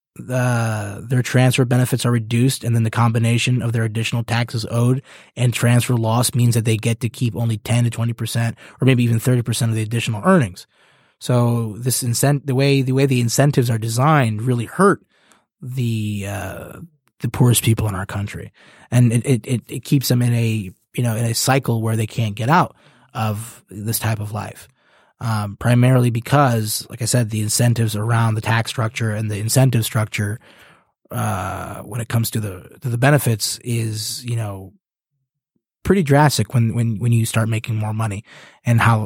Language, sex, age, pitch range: English, male, 30-49, 110-125 Hz